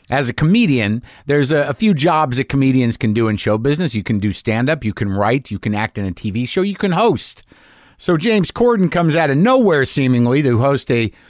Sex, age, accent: male, 50-69, American